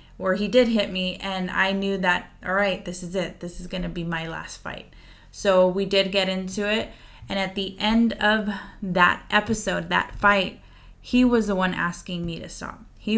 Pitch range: 180-210 Hz